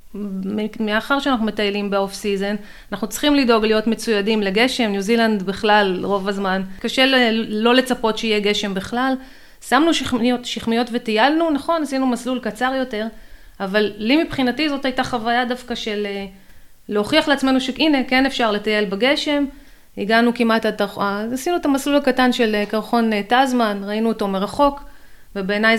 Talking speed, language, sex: 140 wpm, Hebrew, female